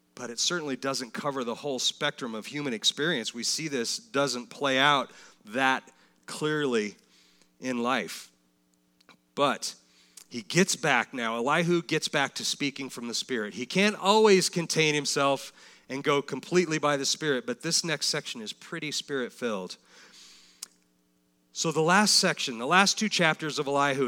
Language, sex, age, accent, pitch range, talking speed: English, male, 40-59, American, 135-195 Hz, 155 wpm